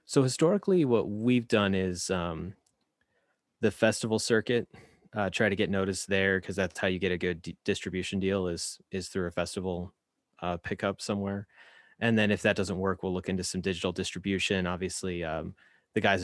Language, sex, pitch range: English, male, 90-100 Hz